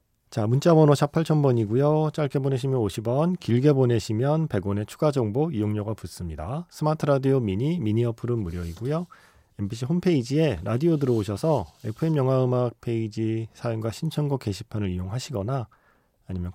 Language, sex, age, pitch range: Korean, male, 40-59, 95-140 Hz